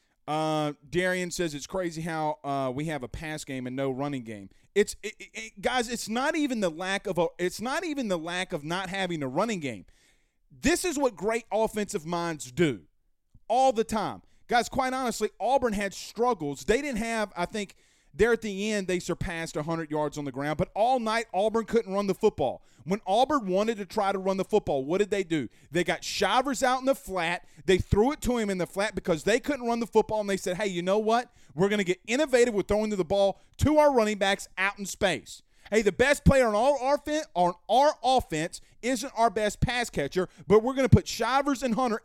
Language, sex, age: English, male, 30-49